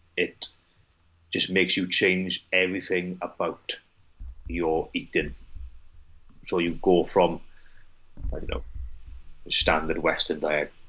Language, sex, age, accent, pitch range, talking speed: English, male, 30-49, British, 75-90 Hz, 105 wpm